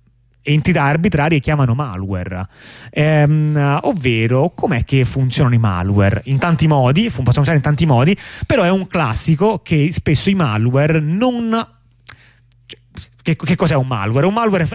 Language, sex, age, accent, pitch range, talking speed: Italian, male, 30-49, native, 120-165 Hz, 140 wpm